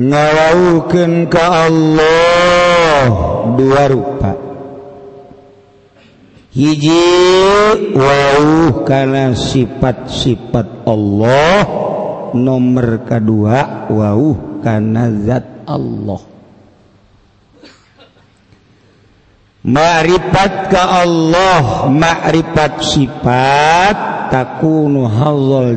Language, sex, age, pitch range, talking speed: Indonesian, male, 50-69, 105-165 Hz, 50 wpm